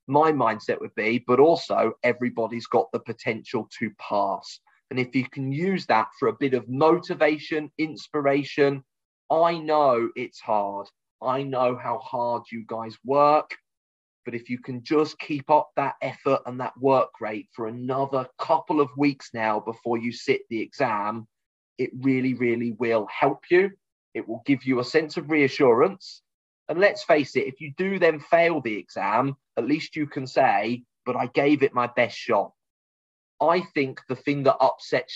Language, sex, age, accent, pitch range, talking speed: English, male, 30-49, British, 115-145 Hz, 175 wpm